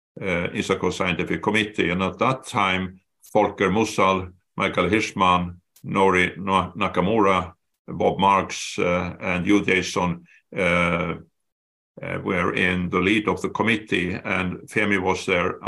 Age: 50-69